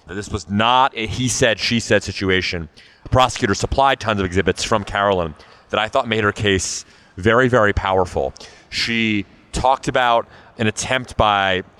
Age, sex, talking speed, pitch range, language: 30-49, male, 145 wpm, 90-115 Hz, English